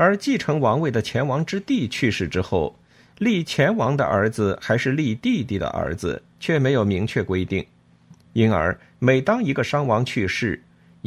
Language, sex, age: Chinese, male, 50-69